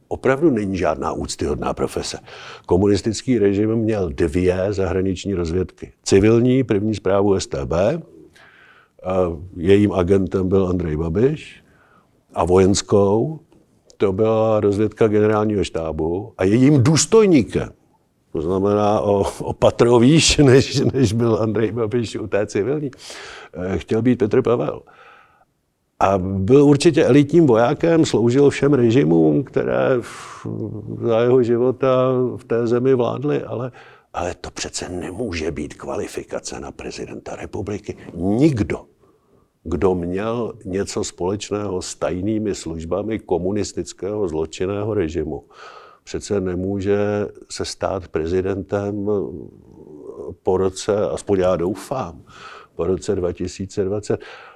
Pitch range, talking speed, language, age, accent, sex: 95-120 Hz, 105 wpm, Czech, 50-69, native, male